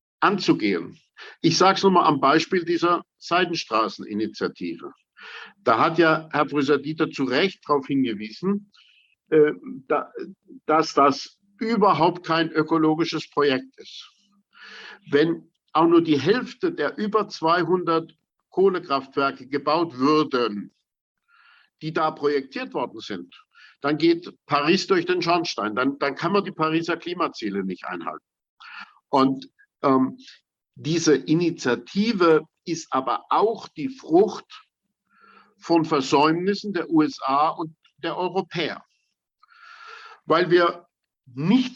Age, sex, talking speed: 50-69, male, 110 wpm